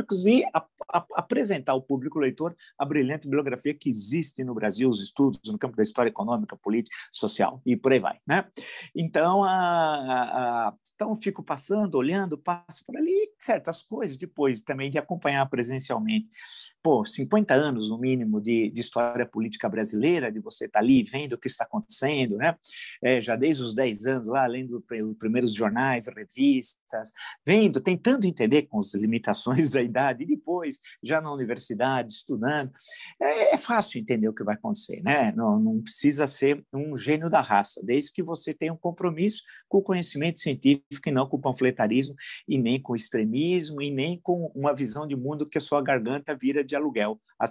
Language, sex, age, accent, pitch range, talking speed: Portuguese, male, 50-69, Brazilian, 130-180 Hz, 180 wpm